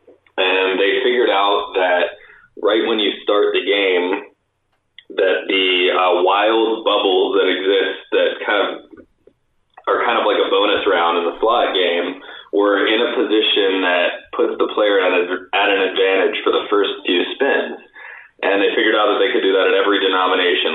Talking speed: 180 wpm